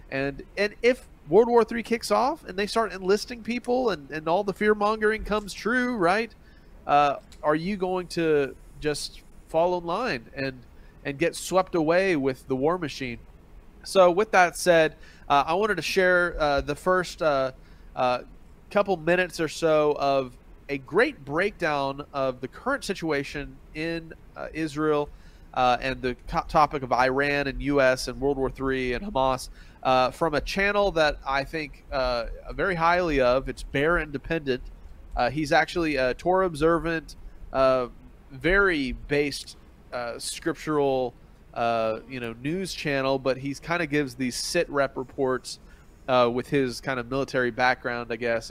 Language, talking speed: English, 160 wpm